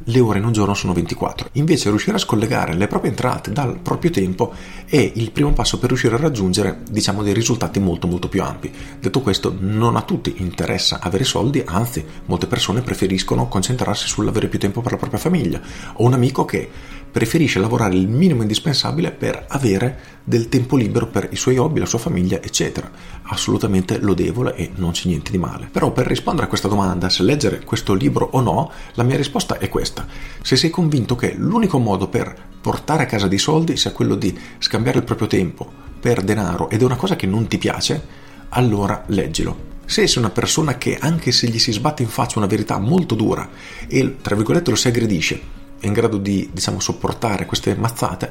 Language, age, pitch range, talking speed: Italian, 40-59, 95-125 Hz, 200 wpm